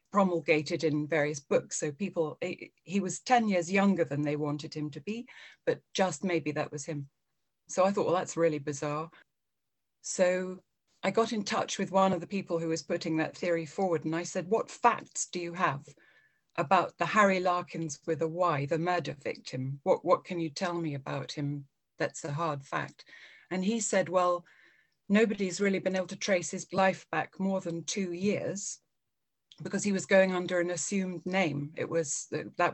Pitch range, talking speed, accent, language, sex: 160-190 Hz, 190 wpm, British, English, female